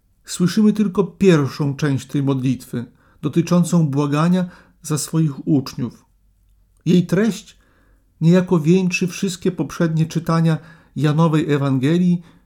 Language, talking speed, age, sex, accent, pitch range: Polish, 95 wpm, 50-69, male, native, 135-175 Hz